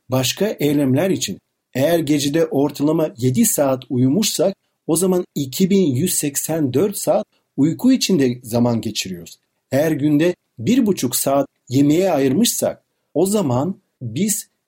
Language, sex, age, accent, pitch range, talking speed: Turkish, male, 50-69, native, 125-190 Hz, 105 wpm